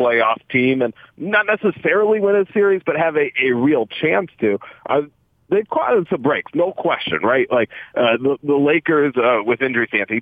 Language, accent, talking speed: English, American, 180 wpm